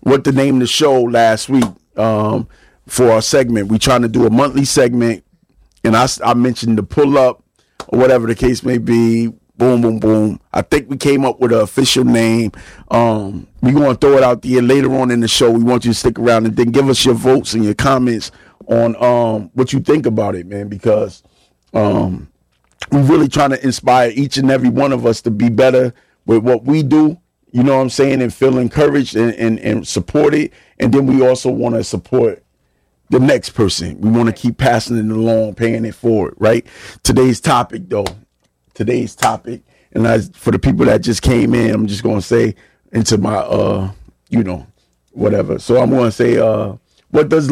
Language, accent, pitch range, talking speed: English, American, 110-130 Hz, 210 wpm